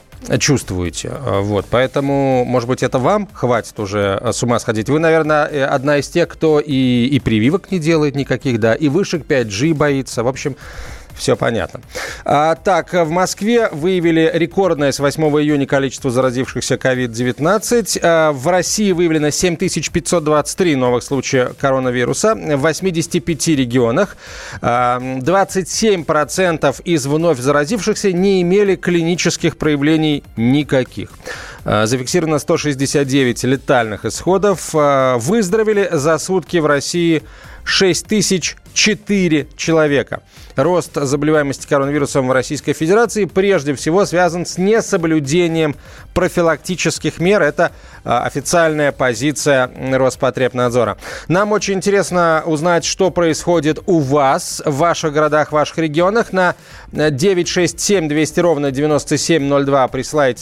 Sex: male